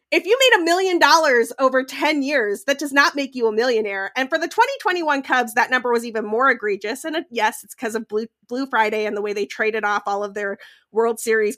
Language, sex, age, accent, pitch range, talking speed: English, female, 30-49, American, 225-320 Hz, 240 wpm